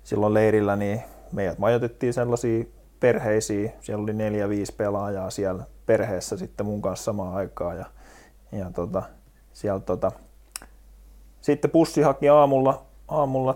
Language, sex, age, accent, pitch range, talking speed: Finnish, male, 20-39, native, 105-120 Hz, 120 wpm